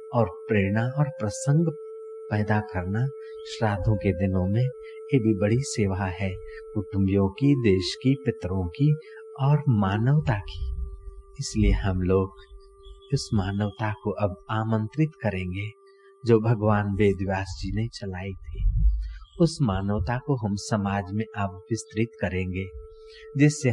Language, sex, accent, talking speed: Hindi, male, native, 125 wpm